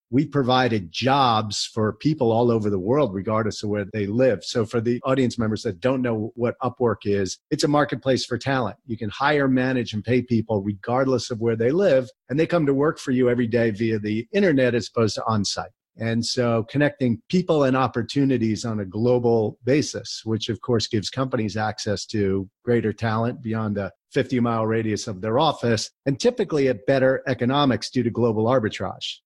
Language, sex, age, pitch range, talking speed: English, male, 50-69, 110-140 Hz, 190 wpm